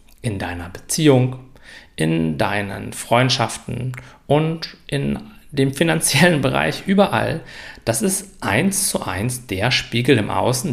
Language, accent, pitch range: German, German, 115-150 Hz